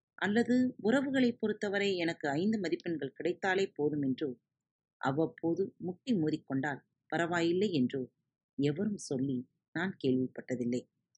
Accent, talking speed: native, 95 wpm